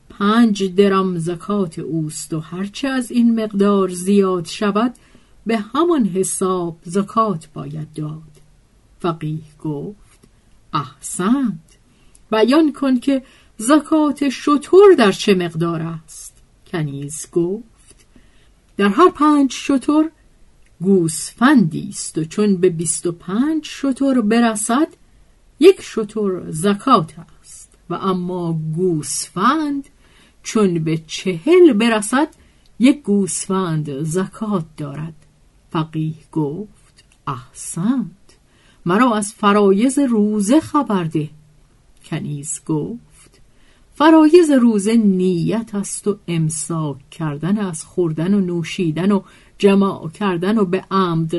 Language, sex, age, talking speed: Persian, female, 50-69, 105 wpm